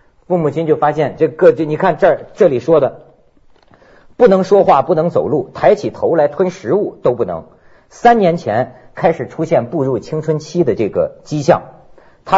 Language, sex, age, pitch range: Chinese, male, 50-69, 155-205 Hz